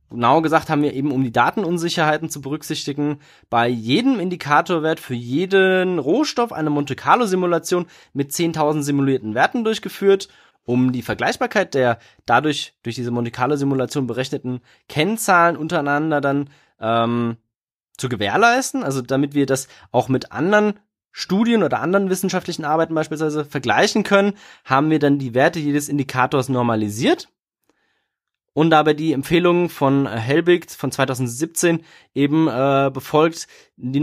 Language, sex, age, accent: German, male, 20-39, German